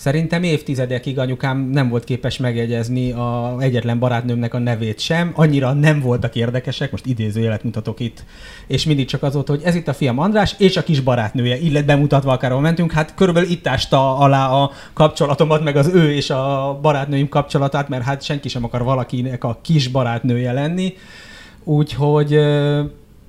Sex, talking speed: male, 165 wpm